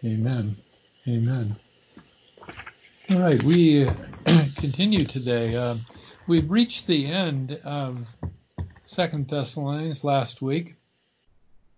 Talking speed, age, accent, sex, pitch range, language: 85 wpm, 50-69, American, male, 120-155 Hz, English